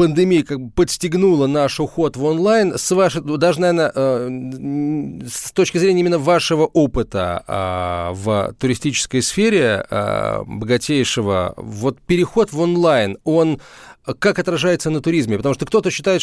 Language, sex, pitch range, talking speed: Russian, male, 130-175 Hz, 120 wpm